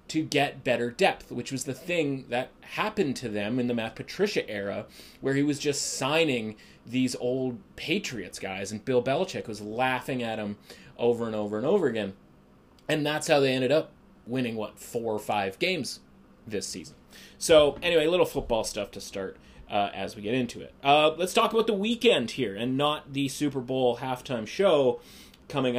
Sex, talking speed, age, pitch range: male, 190 wpm, 30-49, 115-150 Hz